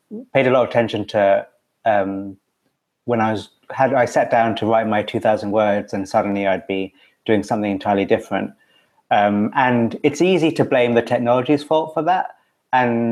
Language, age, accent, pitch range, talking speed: English, 30-49, British, 105-130 Hz, 180 wpm